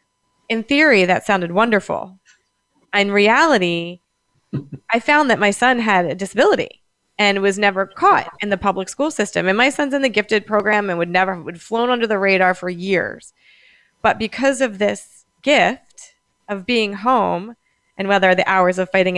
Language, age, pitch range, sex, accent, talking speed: English, 30-49, 190-245 Hz, female, American, 170 wpm